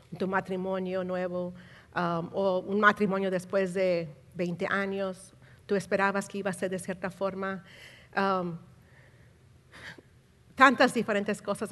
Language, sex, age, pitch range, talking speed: Spanish, female, 50-69, 165-215 Hz, 125 wpm